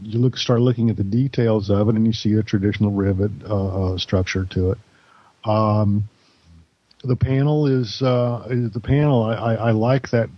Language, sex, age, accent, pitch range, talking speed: English, male, 50-69, American, 105-120 Hz, 190 wpm